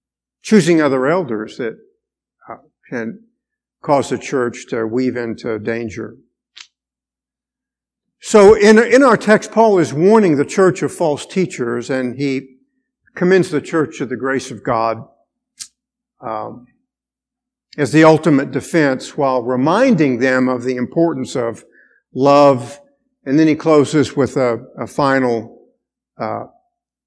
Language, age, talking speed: English, 50-69, 130 wpm